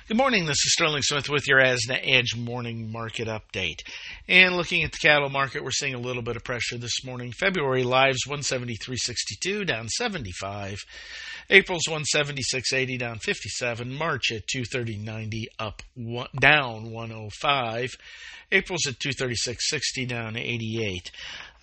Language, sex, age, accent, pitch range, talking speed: English, male, 50-69, American, 120-150 Hz, 130 wpm